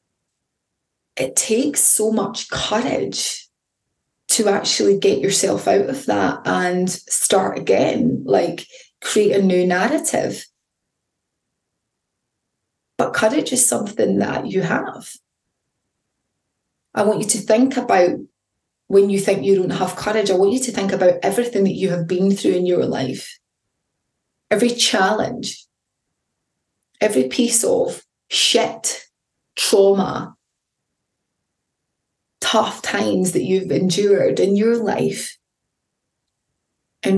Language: English